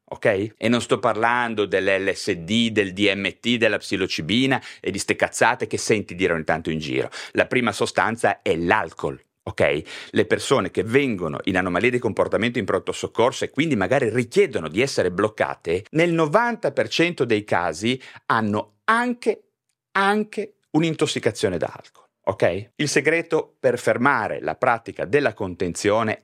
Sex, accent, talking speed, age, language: male, native, 145 wpm, 40-59, Italian